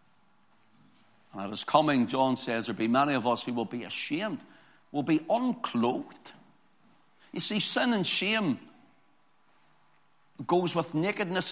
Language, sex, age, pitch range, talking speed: English, male, 60-79, 180-230 Hz, 130 wpm